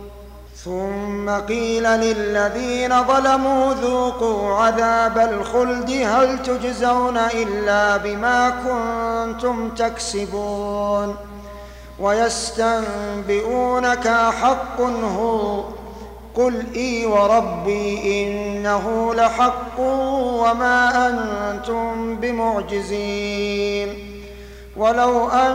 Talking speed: 55 wpm